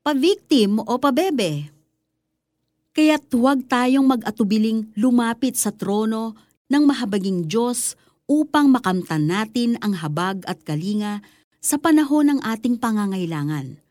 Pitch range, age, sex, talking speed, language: 180-255 Hz, 40-59, female, 110 wpm, Filipino